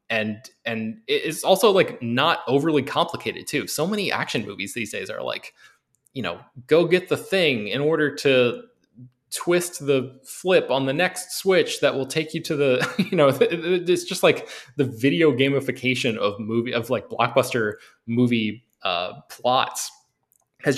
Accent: American